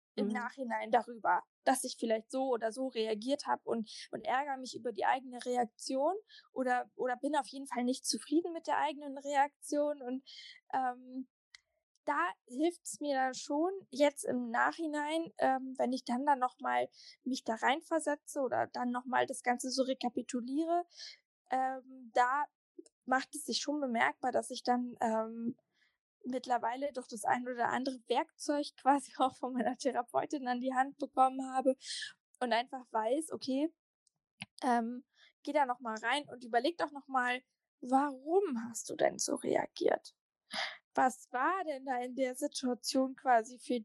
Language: German